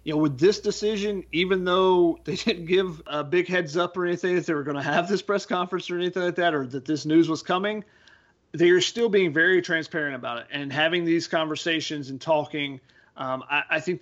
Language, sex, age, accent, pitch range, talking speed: English, male, 40-59, American, 150-180 Hz, 225 wpm